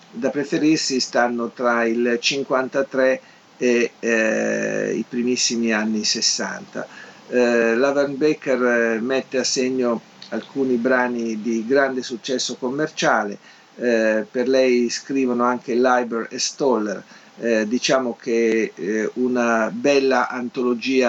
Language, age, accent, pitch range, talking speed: Italian, 50-69, native, 115-135 Hz, 115 wpm